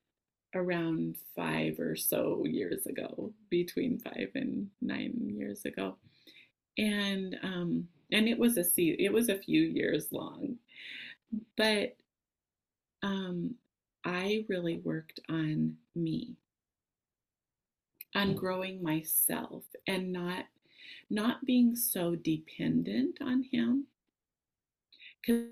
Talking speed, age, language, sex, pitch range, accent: 100 wpm, 30-49, English, female, 165-220 Hz, American